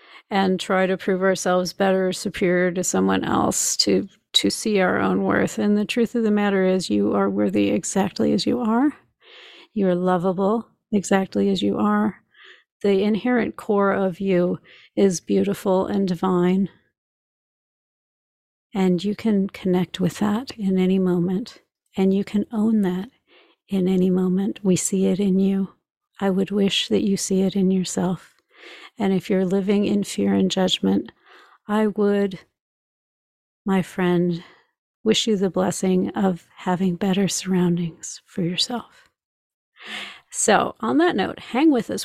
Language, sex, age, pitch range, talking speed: English, female, 40-59, 185-210 Hz, 150 wpm